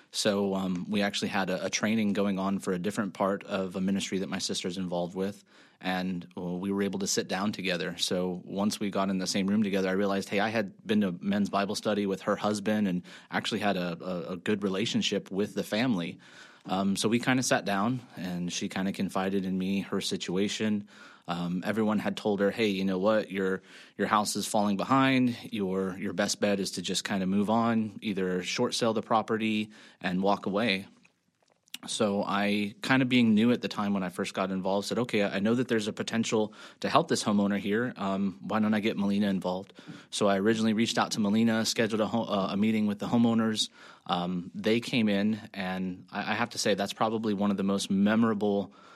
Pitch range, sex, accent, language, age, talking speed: 95-110 Hz, male, American, English, 20-39, 220 wpm